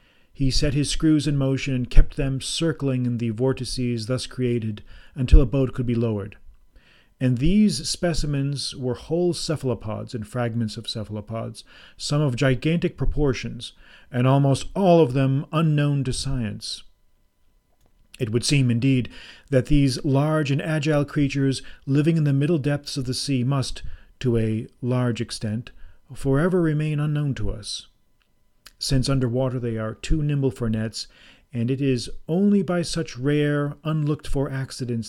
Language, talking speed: English, 150 wpm